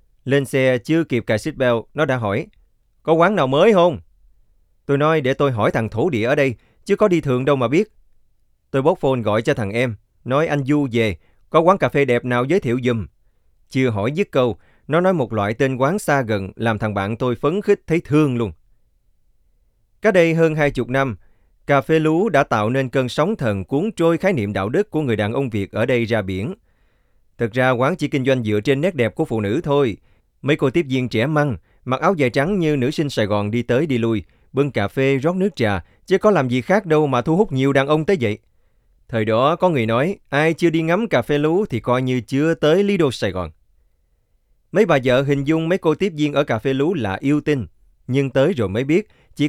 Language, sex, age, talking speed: Vietnamese, male, 20-39, 240 wpm